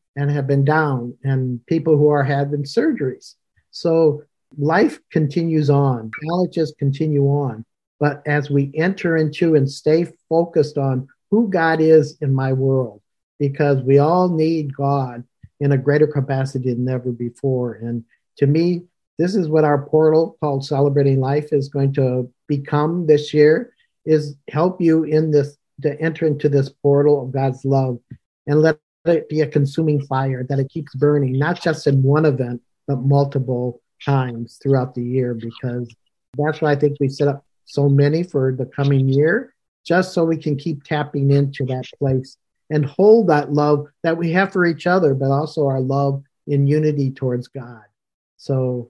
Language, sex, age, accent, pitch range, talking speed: English, male, 50-69, American, 135-160 Hz, 170 wpm